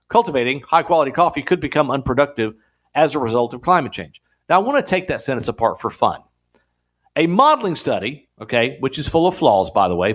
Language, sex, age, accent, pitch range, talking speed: English, male, 40-59, American, 115-175 Hz, 200 wpm